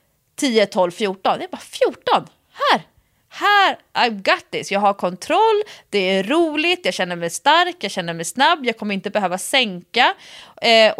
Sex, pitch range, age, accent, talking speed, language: female, 185-280 Hz, 30-49, Swedish, 175 wpm, English